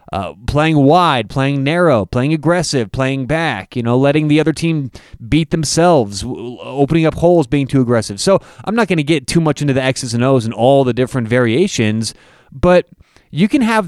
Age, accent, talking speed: 30-49, American, 195 wpm